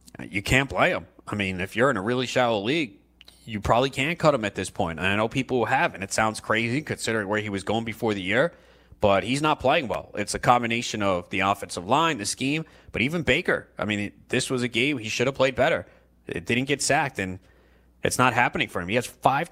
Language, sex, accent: English, male, American